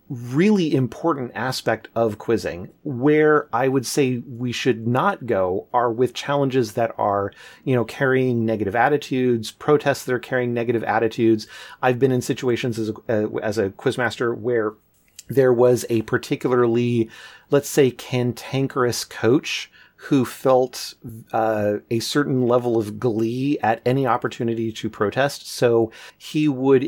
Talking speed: 140 wpm